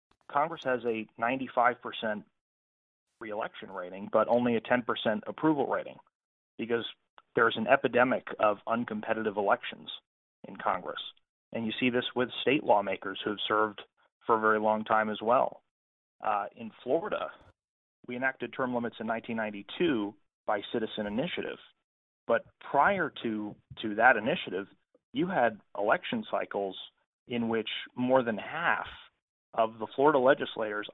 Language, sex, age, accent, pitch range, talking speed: English, male, 30-49, American, 105-125 Hz, 135 wpm